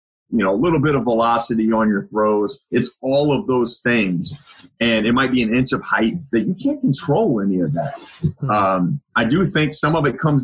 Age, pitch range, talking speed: 30-49, 110-140 Hz, 220 wpm